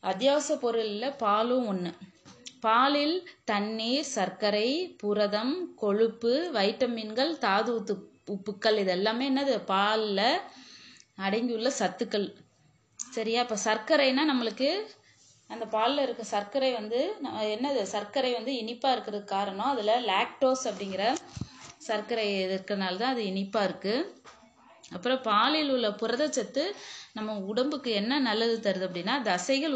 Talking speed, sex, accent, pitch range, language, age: 110 wpm, female, native, 205-260 Hz, Tamil, 20-39